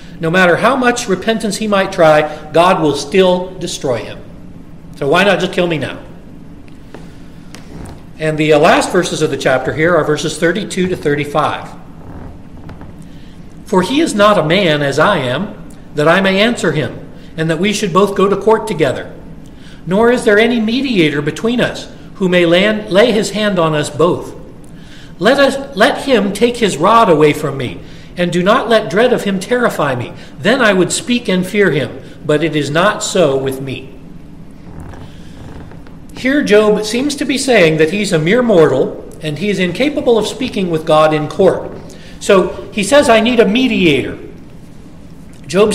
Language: English